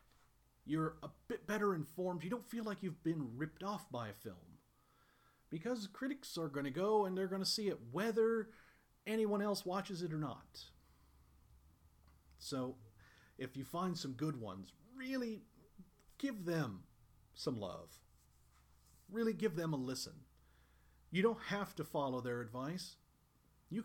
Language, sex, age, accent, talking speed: English, male, 40-59, American, 150 wpm